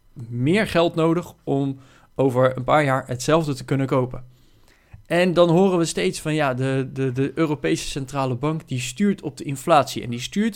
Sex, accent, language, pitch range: male, Dutch, Dutch, 125-160 Hz